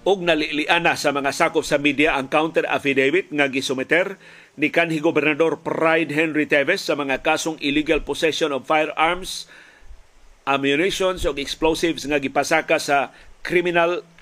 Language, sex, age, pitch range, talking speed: Filipino, male, 50-69, 145-180 Hz, 130 wpm